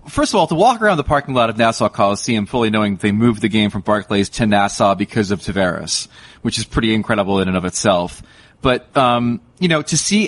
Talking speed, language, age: 230 wpm, English, 30-49